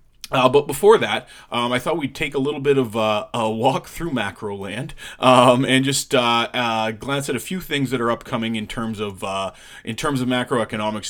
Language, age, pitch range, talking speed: English, 30-49, 105-130 Hz, 215 wpm